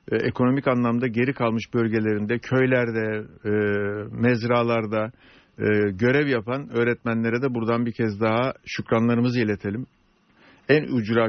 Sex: male